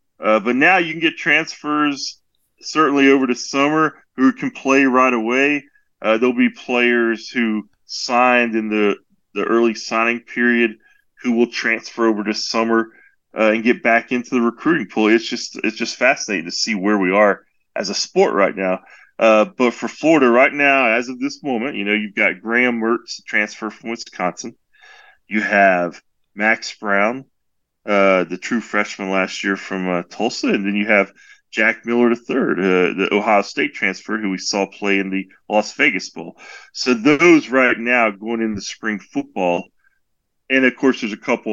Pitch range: 95-125 Hz